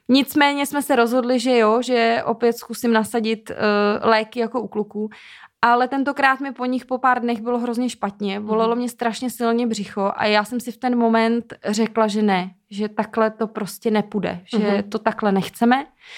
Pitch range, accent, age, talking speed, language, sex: 215-250 Hz, native, 20-39, 180 wpm, Czech, female